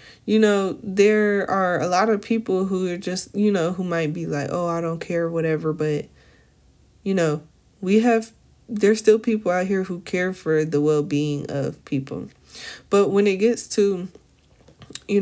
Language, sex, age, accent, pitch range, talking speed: English, female, 20-39, American, 145-180 Hz, 180 wpm